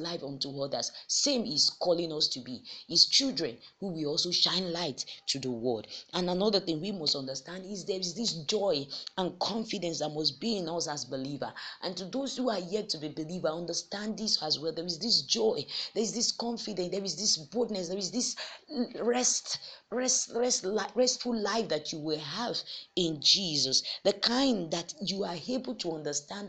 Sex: female